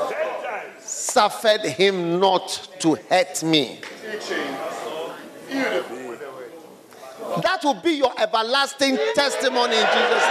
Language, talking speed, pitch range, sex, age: English, 80 wpm, 160-235 Hz, male, 50-69